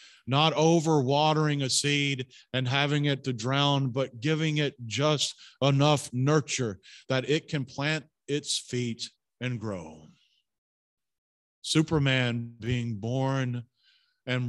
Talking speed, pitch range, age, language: 110 wpm, 125-165 Hz, 40-59, English